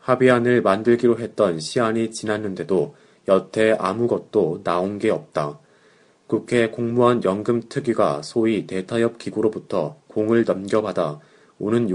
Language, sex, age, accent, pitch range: Korean, male, 30-49, native, 95-115 Hz